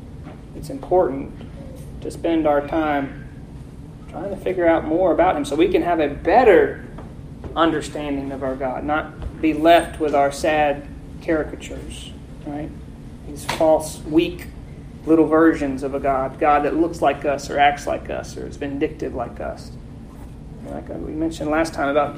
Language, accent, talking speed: English, American, 160 wpm